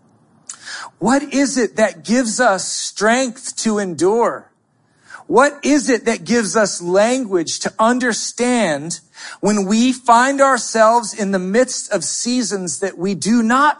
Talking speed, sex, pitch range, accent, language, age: 135 wpm, male, 190-255 Hz, American, English, 40-59